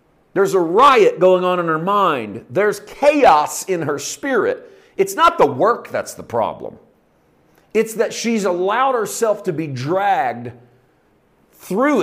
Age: 50-69